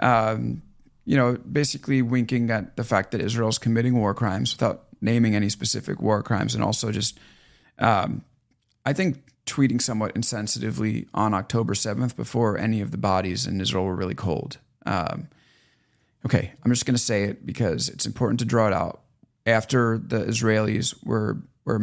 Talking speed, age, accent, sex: 170 wpm, 30-49, American, male